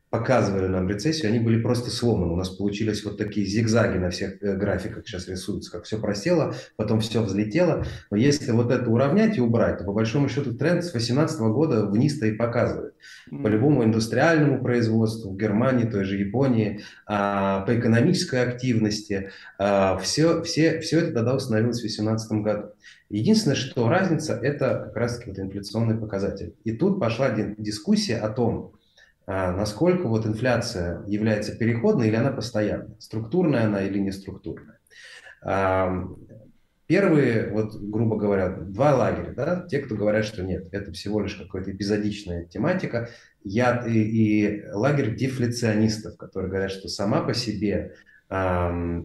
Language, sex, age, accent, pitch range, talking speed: Russian, male, 30-49, native, 100-120 Hz, 145 wpm